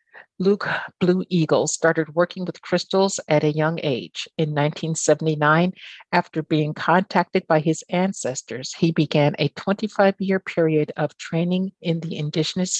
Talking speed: 140 wpm